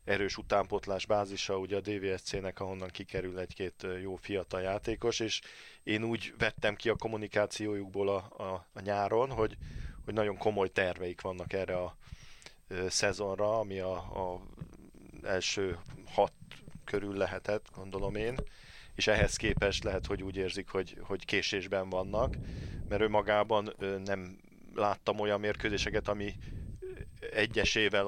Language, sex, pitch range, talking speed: Hungarian, male, 95-105 Hz, 130 wpm